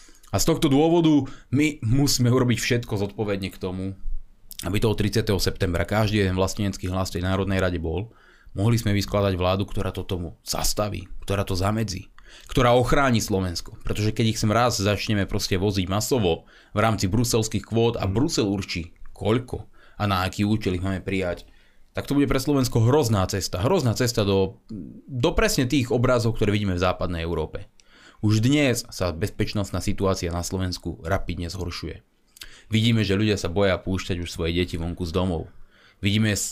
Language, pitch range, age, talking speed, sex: Slovak, 95-120 Hz, 30-49, 170 wpm, male